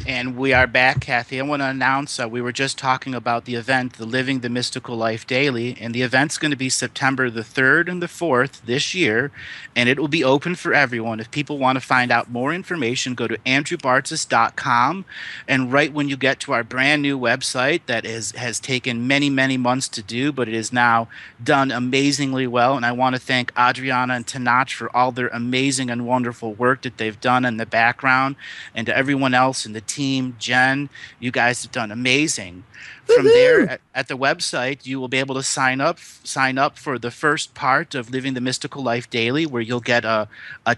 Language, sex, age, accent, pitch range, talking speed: English, male, 30-49, American, 120-135 Hz, 215 wpm